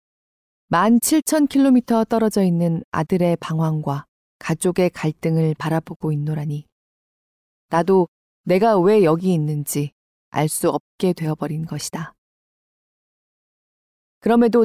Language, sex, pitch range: Korean, female, 160-210 Hz